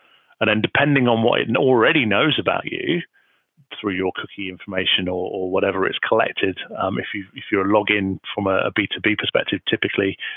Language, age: English, 30-49